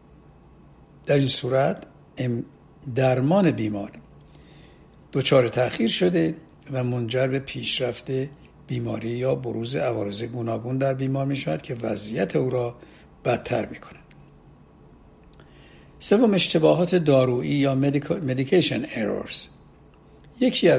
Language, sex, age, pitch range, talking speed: Persian, male, 60-79, 115-145 Hz, 100 wpm